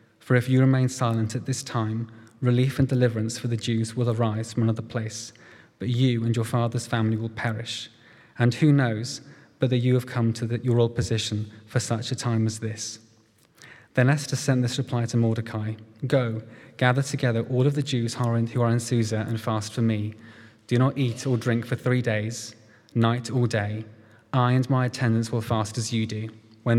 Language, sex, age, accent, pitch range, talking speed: English, male, 20-39, British, 110-125 Hz, 195 wpm